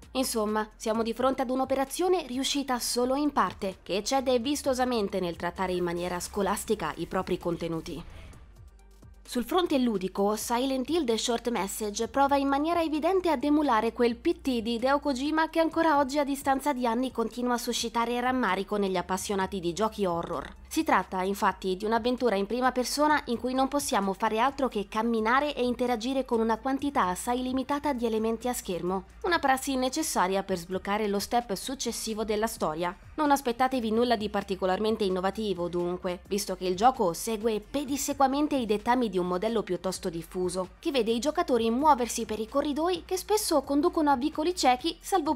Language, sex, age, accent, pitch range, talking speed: Italian, female, 20-39, native, 200-275 Hz, 170 wpm